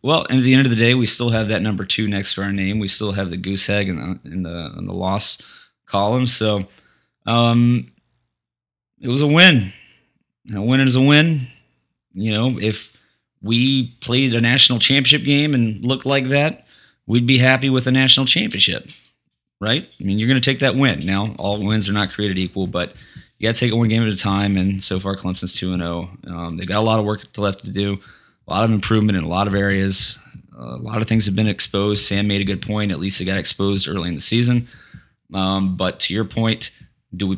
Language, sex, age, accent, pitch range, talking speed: English, male, 20-39, American, 95-120 Hz, 235 wpm